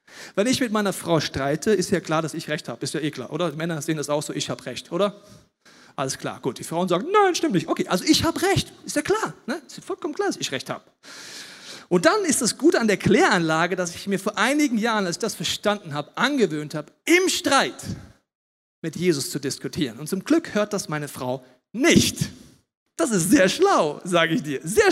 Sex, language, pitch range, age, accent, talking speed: male, German, 165-250 Hz, 40-59, German, 235 wpm